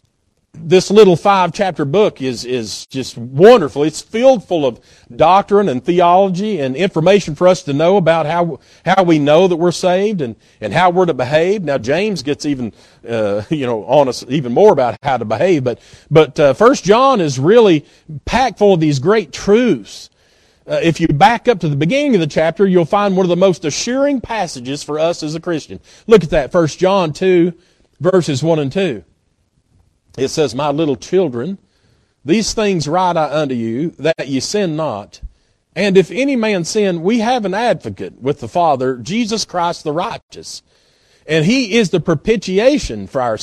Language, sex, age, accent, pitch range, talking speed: English, male, 40-59, American, 145-200 Hz, 190 wpm